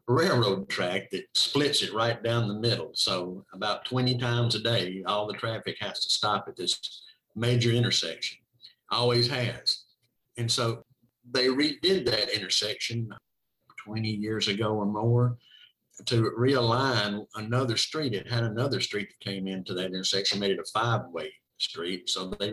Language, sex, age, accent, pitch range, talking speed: English, male, 50-69, American, 105-125 Hz, 155 wpm